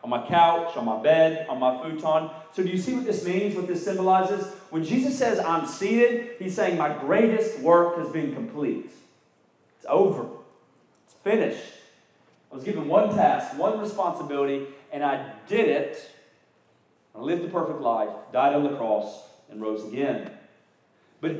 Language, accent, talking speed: English, American, 170 wpm